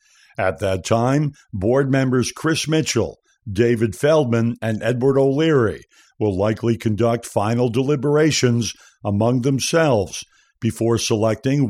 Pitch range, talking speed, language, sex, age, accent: 110-135 Hz, 110 wpm, English, male, 60-79, American